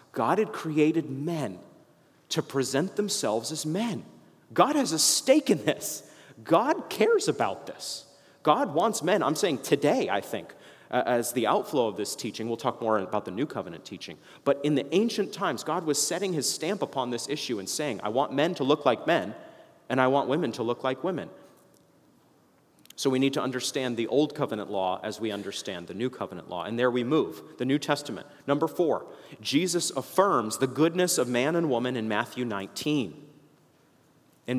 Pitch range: 120-150 Hz